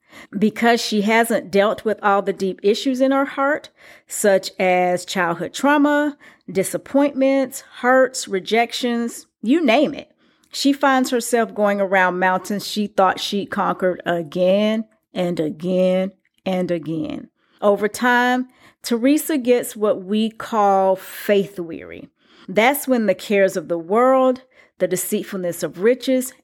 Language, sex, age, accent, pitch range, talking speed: English, female, 40-59, American, 185-255 Hz, 130 wpm